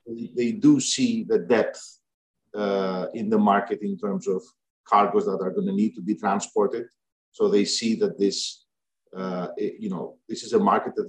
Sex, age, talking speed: male, 50-69, 190 wpm